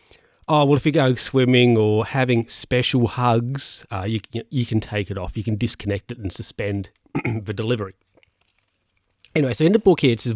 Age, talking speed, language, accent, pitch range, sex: 40-59, 190 wpm, English, Australian, 120-160 Hz, male